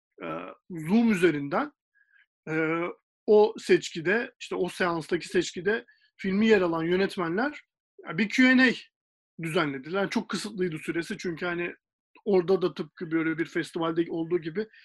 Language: Turkish